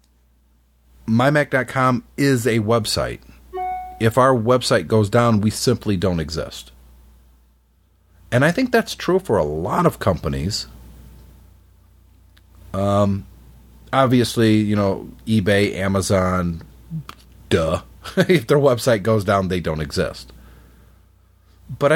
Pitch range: 70-110 Hz